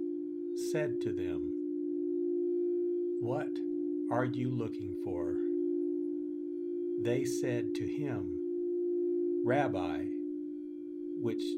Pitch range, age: 325-345 Hz, 60-79